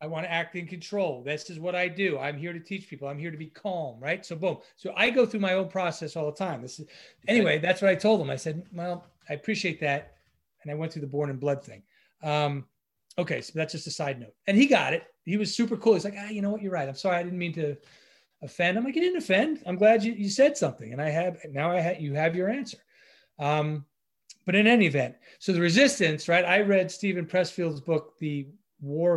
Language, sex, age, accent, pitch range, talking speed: English, male, 30-49, American, 150-195 Hz, 255 wpm